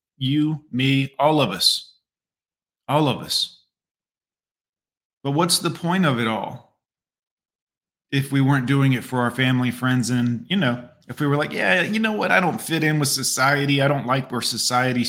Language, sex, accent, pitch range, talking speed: English, male, American, 125-150 Hz, 185 wpm